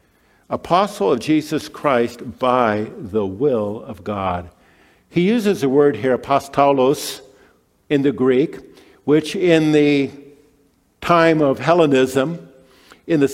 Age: 50-69